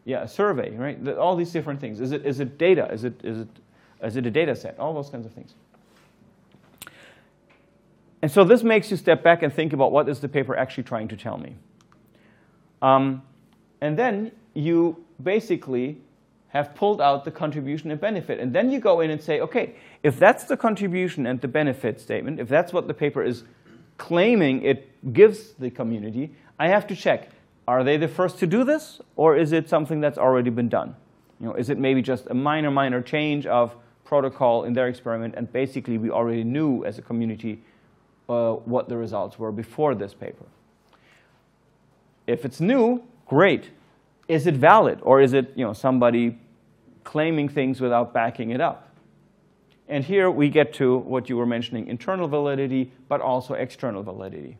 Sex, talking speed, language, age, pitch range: male, 185 wpm, English, 30-49, 125-170 Hz